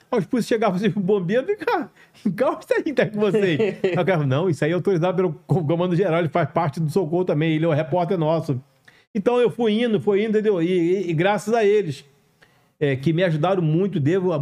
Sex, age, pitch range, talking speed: male, 40-59, 155-200 Hz, 220 wpm